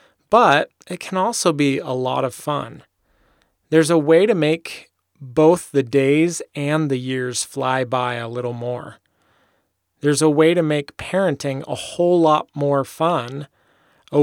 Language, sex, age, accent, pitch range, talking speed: English, male, 30-49, American, 135-165 Hz, 155 wpm